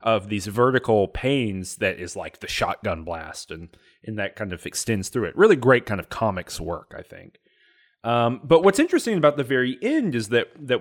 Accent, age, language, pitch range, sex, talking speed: American, 30-49, English, 100-145 Hz, male, 205 wpm